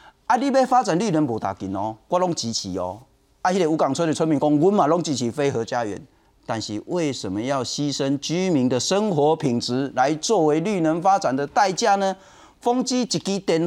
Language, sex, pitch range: Chinese, male, 130-215 Hz